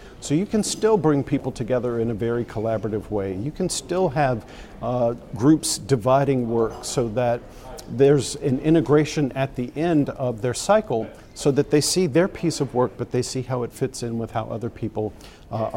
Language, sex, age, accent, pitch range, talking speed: English, male, 50-69, American, 115-145 Hz, 195 wpm